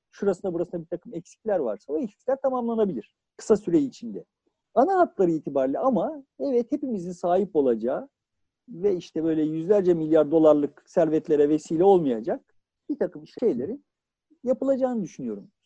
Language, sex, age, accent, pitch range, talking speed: Turkish, male, 50-69, native, 165-265 Hz, 130 wpm